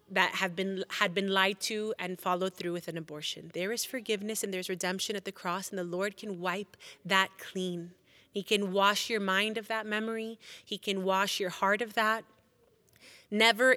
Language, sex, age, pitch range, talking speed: English, female, 30-49, 180-220 Hz, 195 wpm